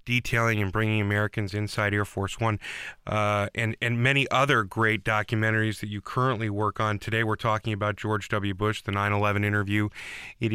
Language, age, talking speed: English, 20-39, 175 wpm